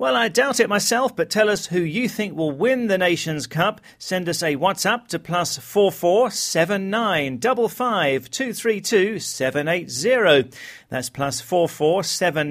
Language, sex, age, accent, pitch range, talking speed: English, male, 40-59, British, 150-205 Hz, 185 wpm